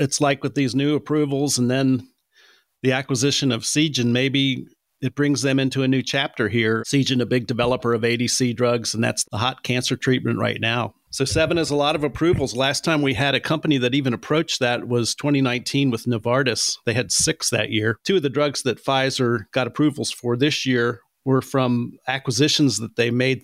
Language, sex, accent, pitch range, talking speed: English, male, American, 120-140 Hz, 200 wpm